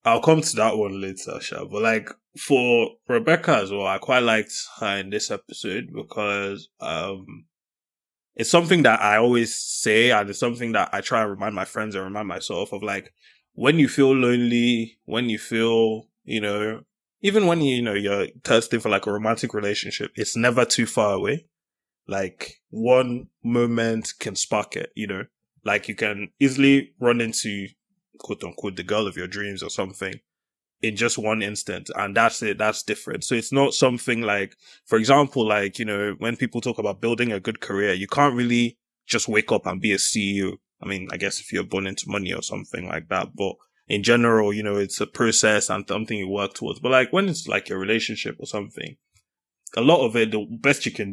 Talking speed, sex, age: 200 wpm, male, 20-39